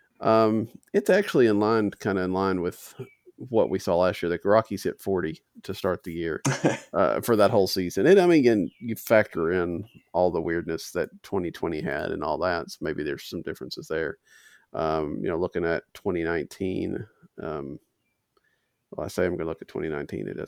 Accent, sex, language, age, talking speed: American, male, English, 40-59, 195 wpm